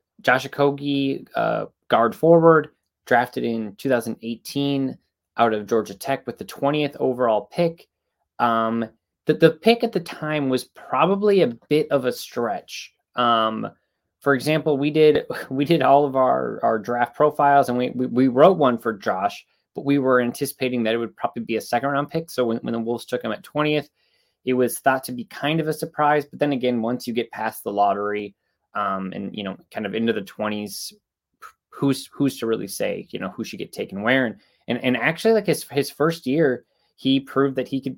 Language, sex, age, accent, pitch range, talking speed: English, male, 20-39, American, 115-145 Hz, 200 wpm